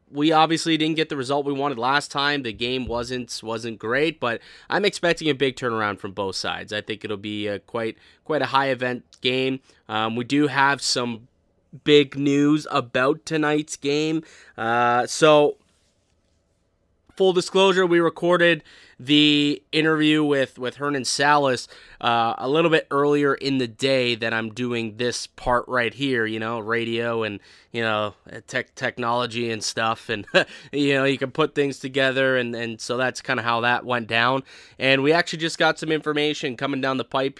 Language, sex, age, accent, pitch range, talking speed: English, male, 20-39, American, 115-145 Hz, 180 wpm